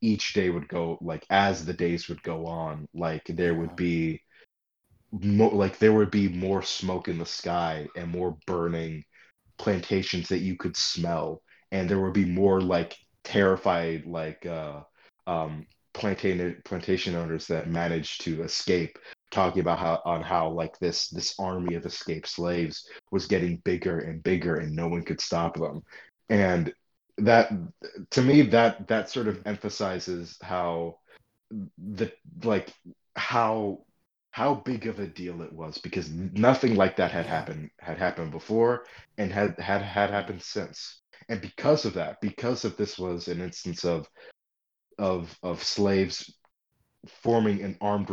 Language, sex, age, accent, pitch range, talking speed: English, male, 30-49, American, 85-105 Hz, 155 wpm